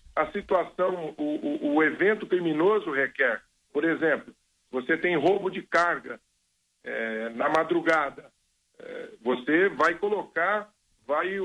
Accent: Brazilian